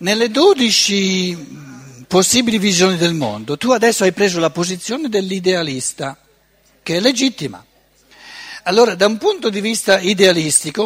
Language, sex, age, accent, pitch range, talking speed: Italian, male, 60-79, native, 135-200 Hz, 125 wpm